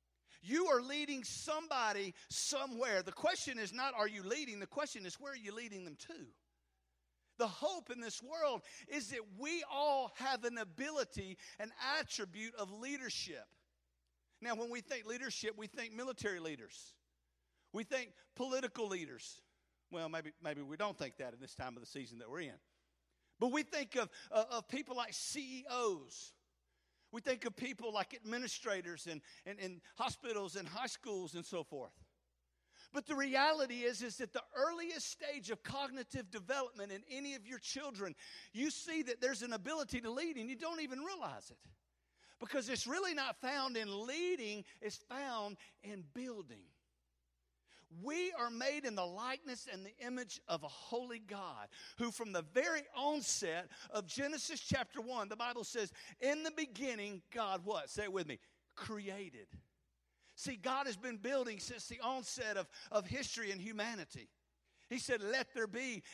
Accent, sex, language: American, male, English